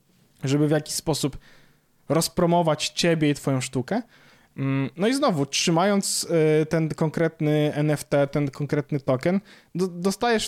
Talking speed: 115 wpm